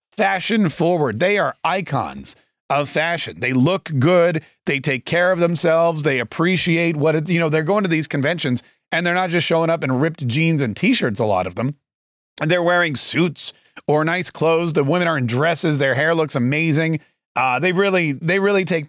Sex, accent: male, American